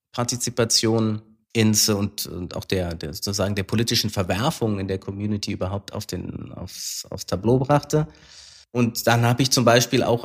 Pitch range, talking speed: 100-120 Hz, 165 wpm